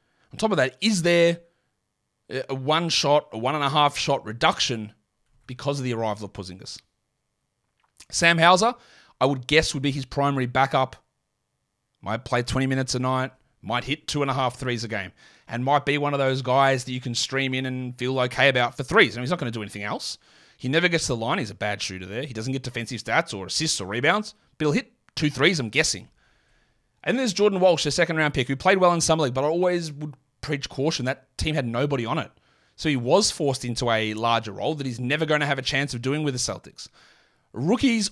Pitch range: 120-155 Hz